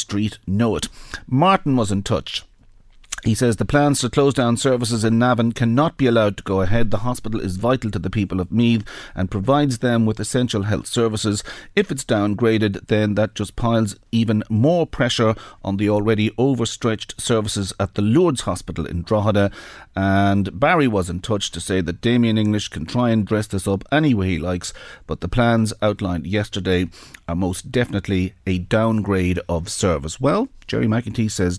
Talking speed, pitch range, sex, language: 180 wpm, 95-120 Hz, male, English